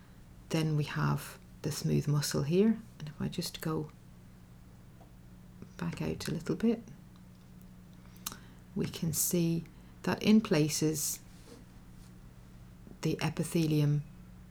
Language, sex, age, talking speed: English, female, 40-59, 105 wpm